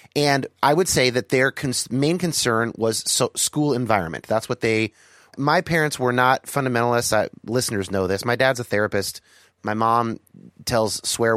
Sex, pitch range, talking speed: male, 110-150 Hz, 180 wpm